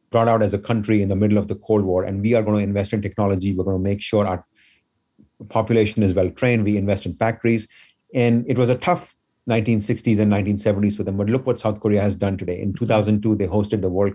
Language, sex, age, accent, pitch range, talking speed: English, male, 30-49, Indian, 100-115 Hz, 240 wpm